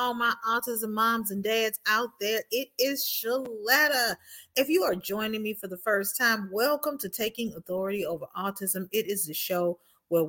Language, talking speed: English, 180 wpm